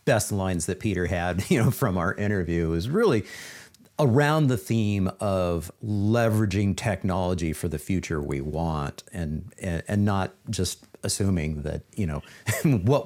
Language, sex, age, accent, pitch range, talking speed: English, male, 50-69, American, 90-115 Hz, 150 wpm